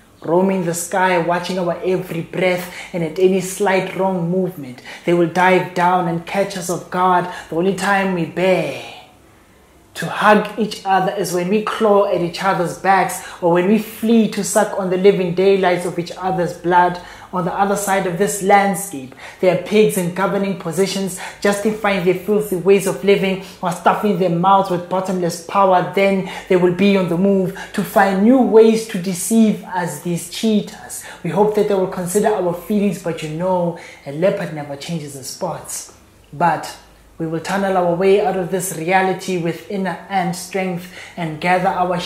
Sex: male